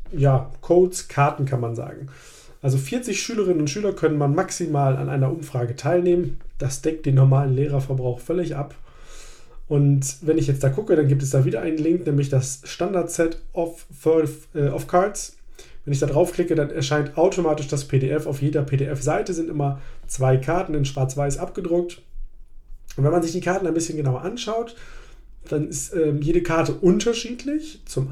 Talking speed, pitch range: 175 wpm, 135-175 Hz